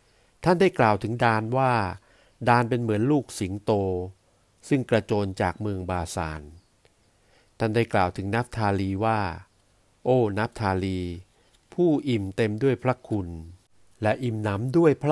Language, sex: Thai, male